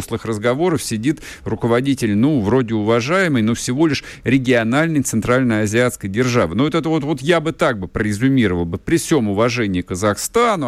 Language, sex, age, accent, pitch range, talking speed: Russian, male, 50-69, native, 120-150 Hz, 165 wpm